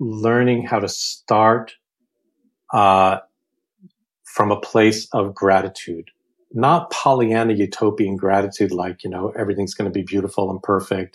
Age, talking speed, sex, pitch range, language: 40-59, 125 wpm, male, 100-120 Hz, English